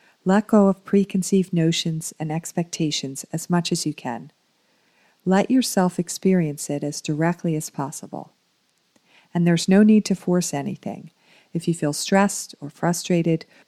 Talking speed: 145 wpm